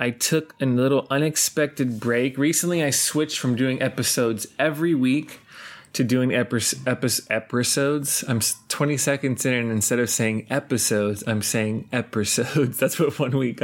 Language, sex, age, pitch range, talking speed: English, male, 20-39, 115-145 Hz, 145 wpm